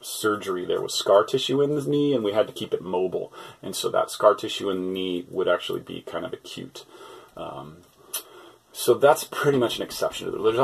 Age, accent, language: 30-49, American, English